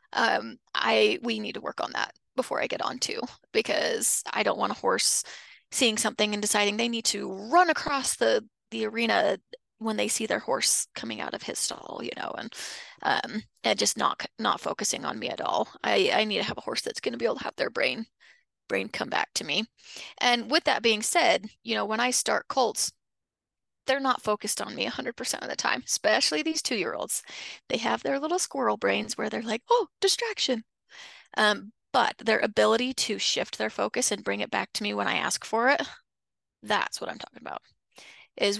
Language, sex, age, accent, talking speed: English, female, 20-39, American, 210 wpm